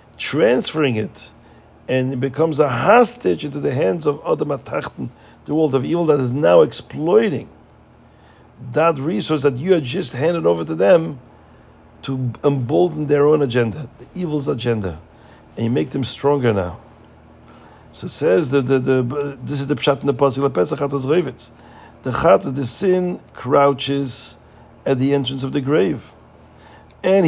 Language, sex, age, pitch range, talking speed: English, male, 50-69, 130-170 Hz, 150 wpm